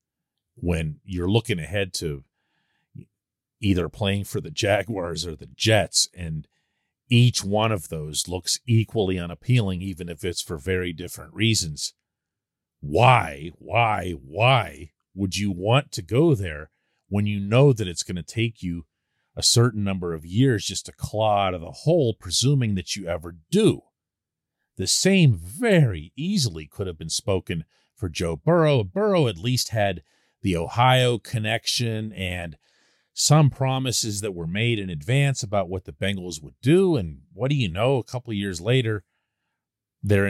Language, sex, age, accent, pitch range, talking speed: English, male, 40-59, American, 90-130 Hz, 160 wpm